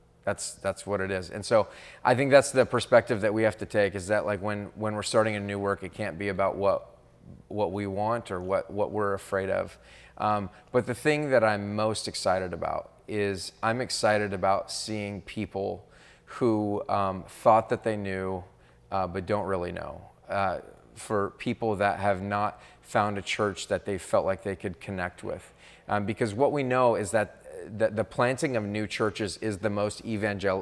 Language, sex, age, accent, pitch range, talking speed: English, male, 30-49, American, 100-110 Hz, 195 wpm